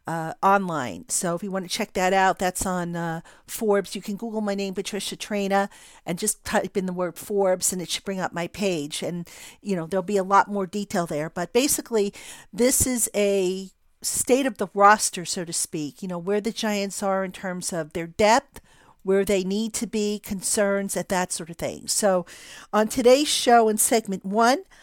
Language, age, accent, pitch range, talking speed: English, 50-69, American, 190-220 Hz, 210 wpm